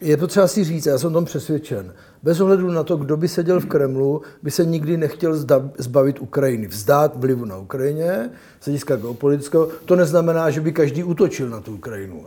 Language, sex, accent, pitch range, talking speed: Czech, male, native, 140-165 Hz, 200 wpm